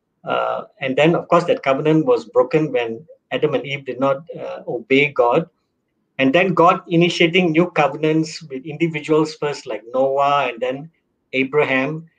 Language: English